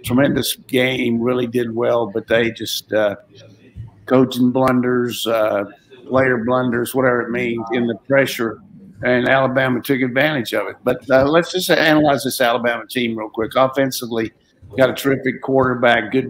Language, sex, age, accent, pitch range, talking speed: English, male, 50-69, American, 115-130 Hz, 155 wpm